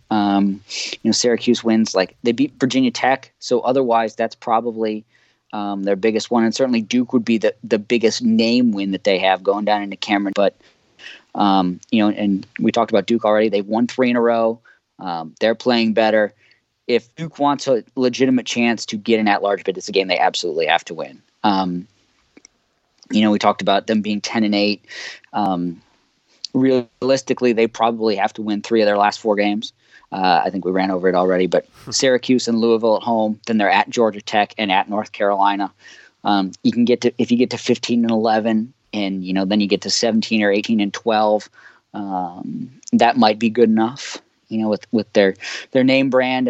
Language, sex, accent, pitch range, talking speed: English, male, American, 100-120 Hz, 205 wpm